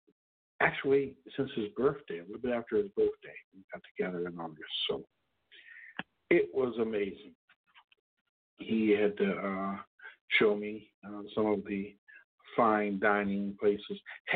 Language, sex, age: English, male, 50-69